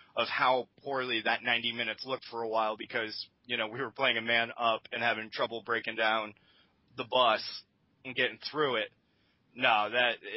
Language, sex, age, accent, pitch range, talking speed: English, male, 20-39, American, 115-130 Hz, 185 wpm